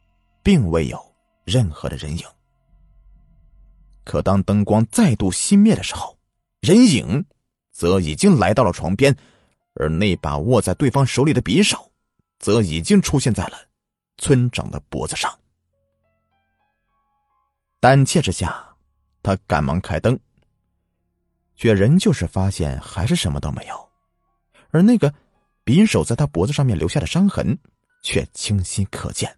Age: 30-49